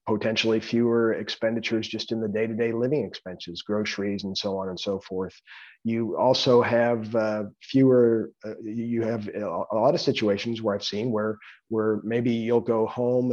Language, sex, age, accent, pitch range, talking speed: English, male, 40-59, American, 105-125 Hz, 165 wpm